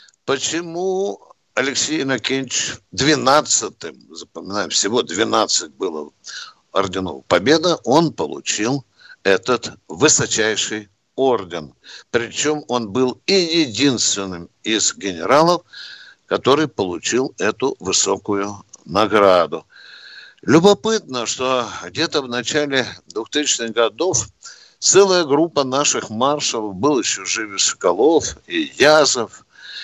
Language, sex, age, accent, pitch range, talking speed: Russian, male, 60-79, native, 105-160 Hz, 90 wpm